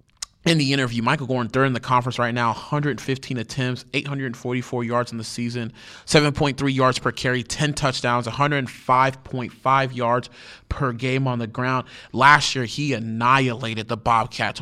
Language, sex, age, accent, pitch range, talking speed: English, male, 30-49, American, 120-140 Hz, 150 wpm